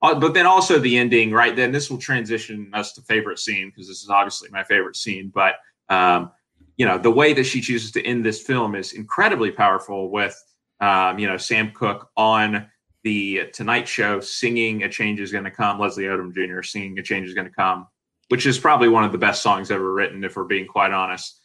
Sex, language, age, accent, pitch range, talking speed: male, English, 30-49, American, 100-120 Hz, 220 wpm